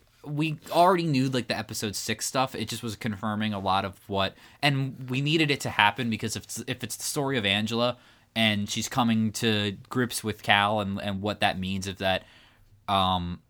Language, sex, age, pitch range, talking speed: English, male, 20-39, 100-125 Hz, 205 wpm